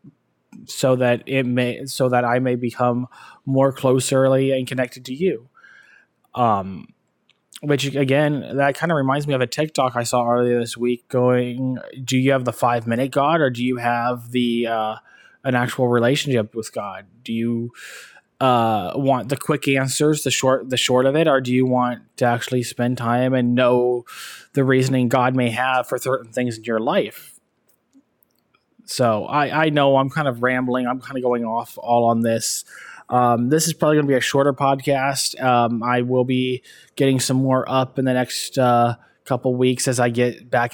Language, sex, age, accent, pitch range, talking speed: English, male, 20-39, American, 120-135 Hz, 190 wpm